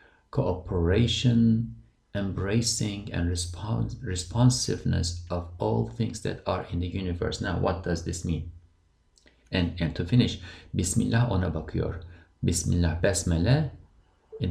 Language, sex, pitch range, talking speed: English, male, 85-115 Hz, 110 wpm